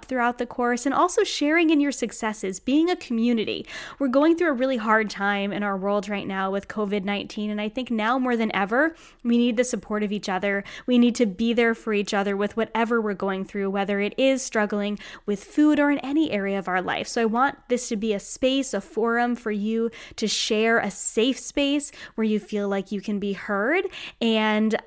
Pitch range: 210-270 Hz